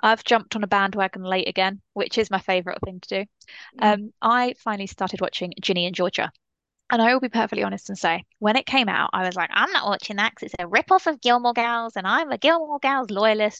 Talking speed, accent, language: 245 wpm, British, English